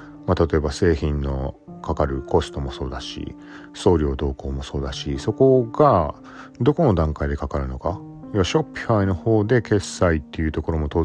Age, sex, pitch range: 40-59, male, 75-110 Hz